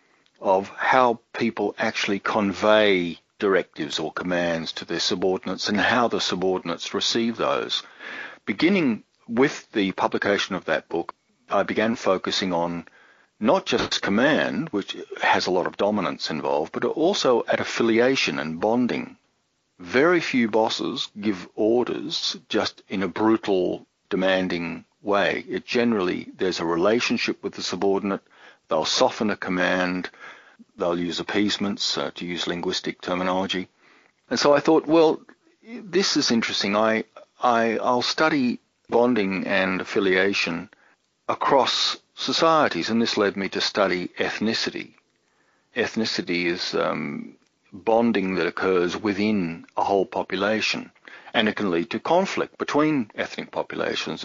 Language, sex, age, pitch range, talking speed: English, male, 50-69, 90-120 Hz, 130 wpm